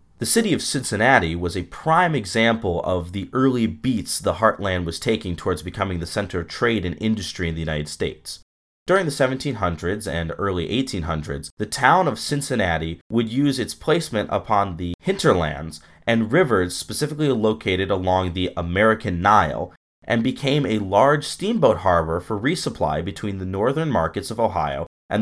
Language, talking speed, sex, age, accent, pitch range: English, 160 wpm, male, 30-49, American, 85-120 Hz